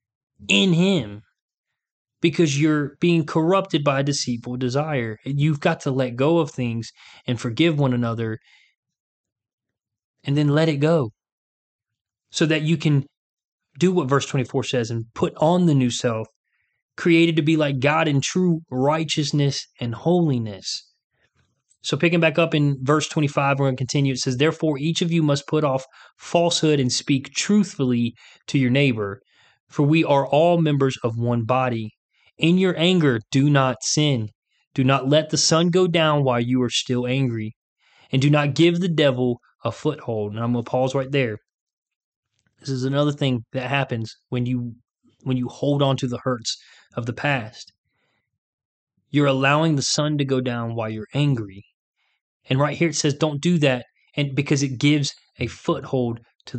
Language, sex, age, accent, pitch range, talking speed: English, male, 20-39, American, 120-155 Hz, 170 wpm